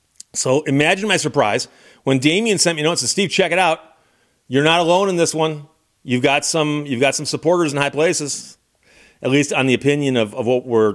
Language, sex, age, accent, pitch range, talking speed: English, male, 40-59, American, 130-165 Hz, 220 wpm